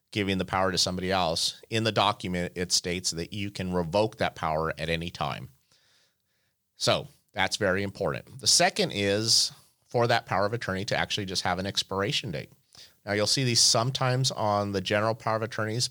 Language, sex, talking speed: English, male, 190 wpm